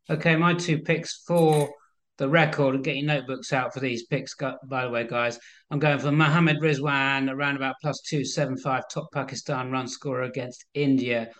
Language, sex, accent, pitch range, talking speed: English, male, British, 130-170 Hz, 185 wpm